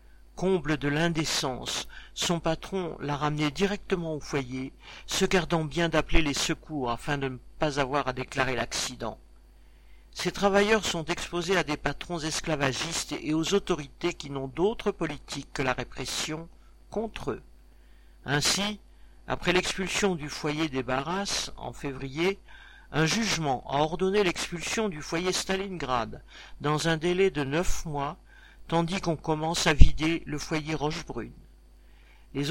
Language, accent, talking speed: French, French, 140 wpm